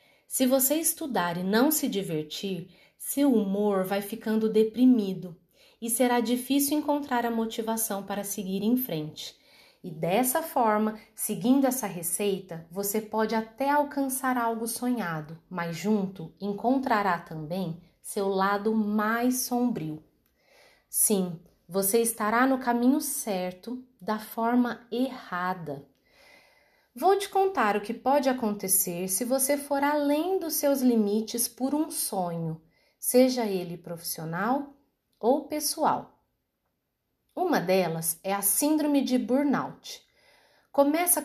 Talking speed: 120 wpm